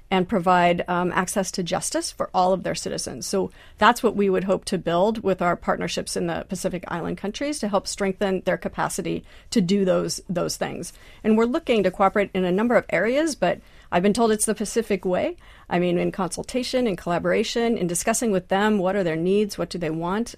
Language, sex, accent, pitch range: English, female, American, 180-205 Hz